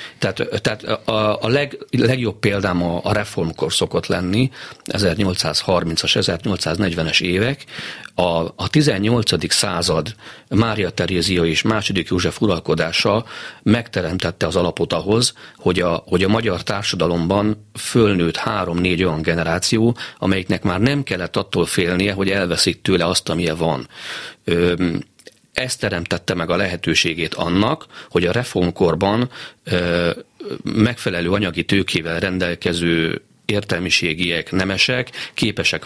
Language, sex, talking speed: Hungarian, male, 115 wpm